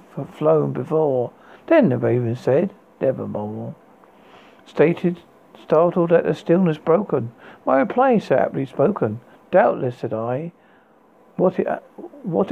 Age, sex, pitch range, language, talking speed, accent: 60-79, male, 125-175 Hz, English, 110 wpm, British